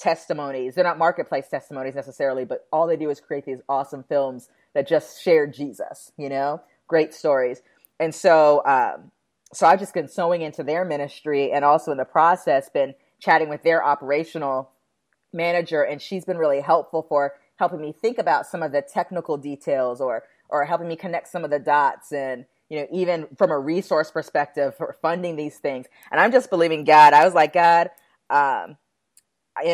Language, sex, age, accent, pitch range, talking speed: English, female, 30-49, American, 145-180 Hz, 185 wpm